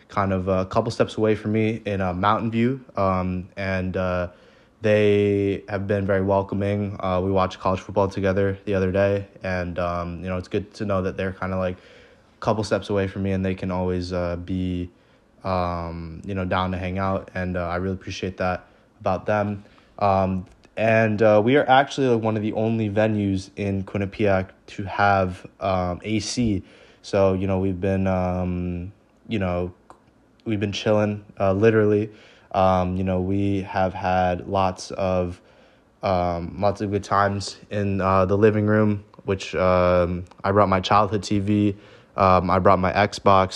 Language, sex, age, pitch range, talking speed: English, male, 20-39, 90-100 Hz, 180 wpm